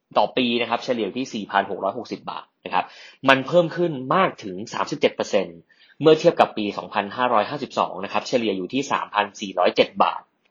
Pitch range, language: 105-150 Hz, Thai